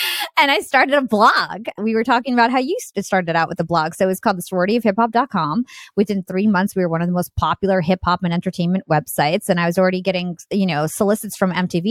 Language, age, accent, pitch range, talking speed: English, 20-39, American, 170-220 Hz, 235 wpm